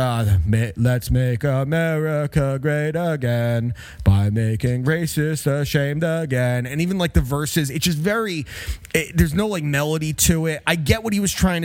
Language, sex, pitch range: English, male, 125-160 Hz